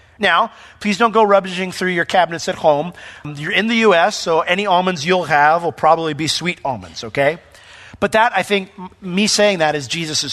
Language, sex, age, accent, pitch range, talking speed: English, male, 40-59, American, 150-205 Hz, 200 wpm